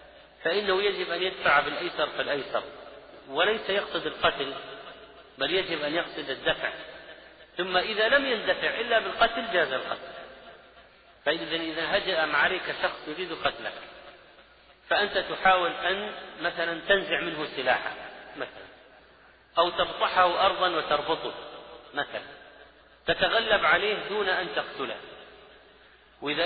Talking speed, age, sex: 110 wpm, 40-59, male